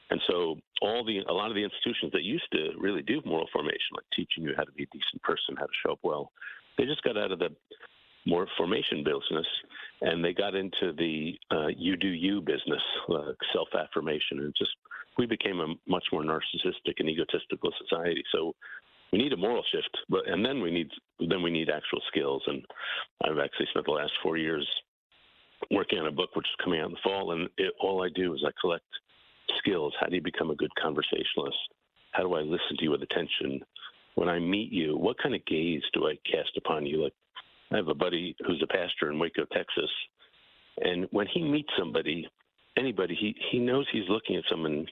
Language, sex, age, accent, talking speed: English, male, 50-69, American, 210 wpm